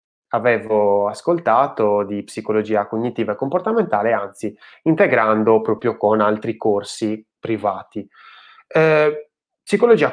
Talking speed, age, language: 95 wpm, 20-39, Italian